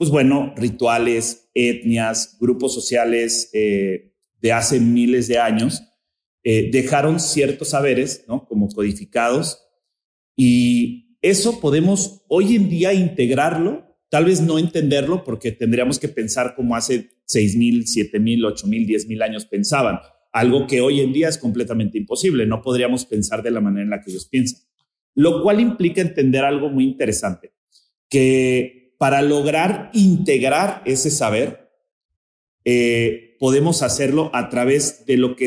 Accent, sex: Mexican, male